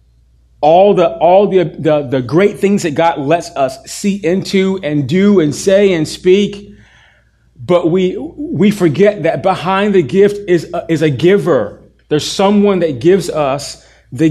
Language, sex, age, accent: English, male, 30-49, American